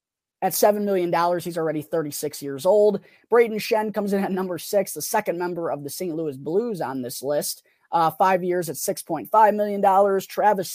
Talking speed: 185 wpm